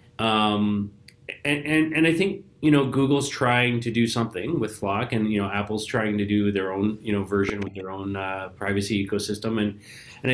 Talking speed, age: 205 wpm, 30-49